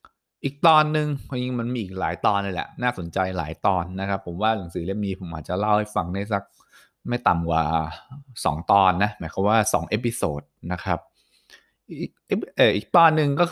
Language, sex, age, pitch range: English, male, 20-39, 95-125 Hz